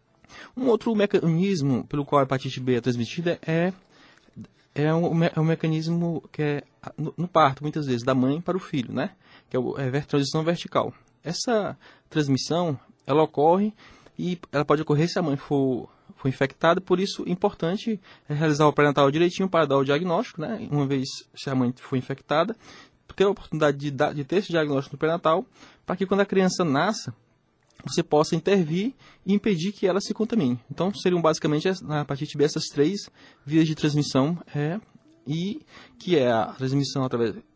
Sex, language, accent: male, Portuguese, Brazilian